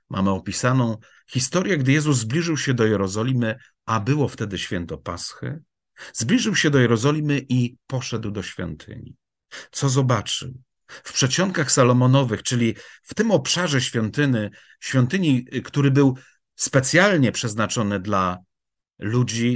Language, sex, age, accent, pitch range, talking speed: Polish, male, 50-69, native, 115-140 Hz, 115 wpm